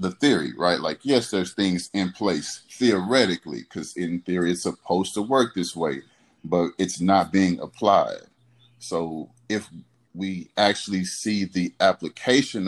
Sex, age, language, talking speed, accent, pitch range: male, 30-49, English, 145 wpm, American, 90-115 Hz